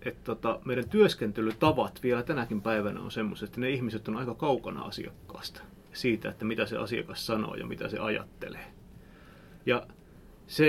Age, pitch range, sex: 30-49, 110-135 Hz, male